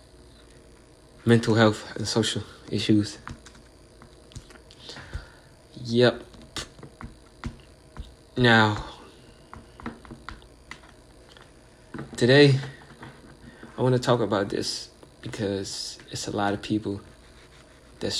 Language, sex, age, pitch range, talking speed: English, male, 20-39, 110-125 Hz, 70 wpm